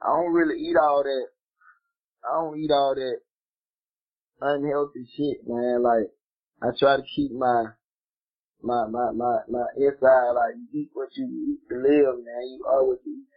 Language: English